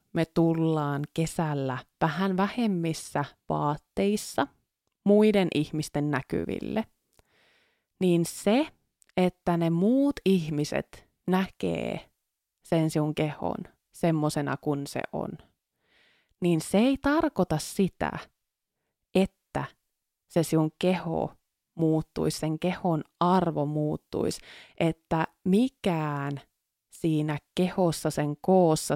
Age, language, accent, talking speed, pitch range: 20-39, Finnish, native, 90 wpm, 155-200 Hz